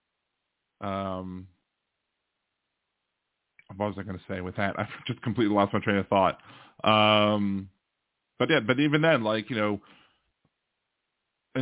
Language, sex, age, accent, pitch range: English, male, 30-49, American, 105-125 Hz